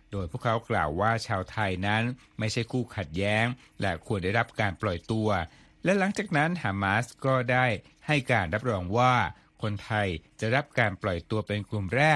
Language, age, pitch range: Thai, 60-79, 100-125 Hz